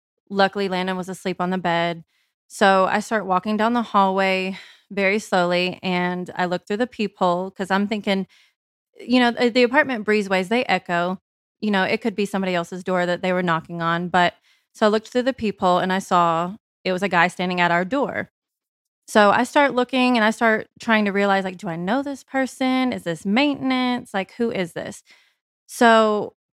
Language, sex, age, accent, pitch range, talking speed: English, female, 20-39, American, 185-220 Hz, 195 wpm